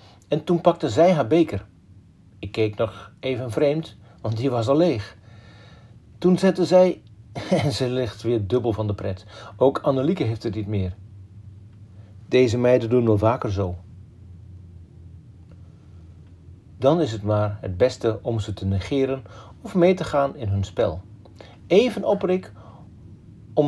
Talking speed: 150 wpm